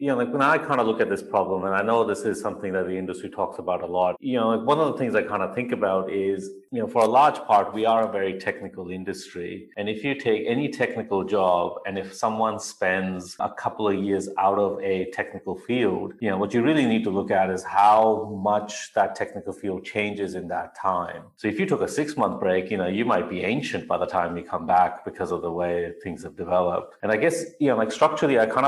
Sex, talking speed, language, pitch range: male, 260 wpm, English, 90-105 Hz